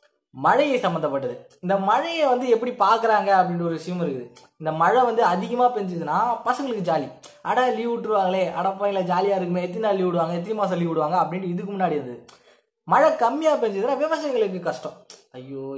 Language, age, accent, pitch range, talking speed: Tamil, 20-39, native, 160-225 Hz, 150 wpm